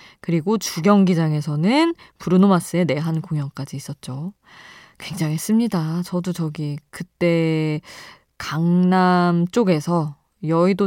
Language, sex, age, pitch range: Korean, female, 20-39, 155-220 Hz